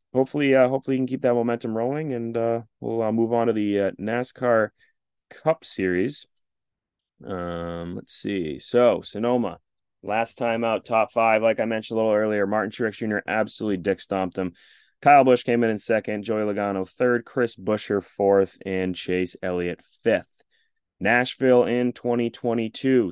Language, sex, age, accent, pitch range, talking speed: English, male, 30-49, American, 95-120 Hz, 165 wpm